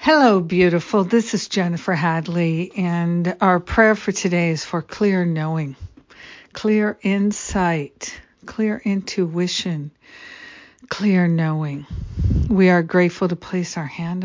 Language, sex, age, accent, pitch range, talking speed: English, female, 60-79, American, 165-190 Hz, 120 wpm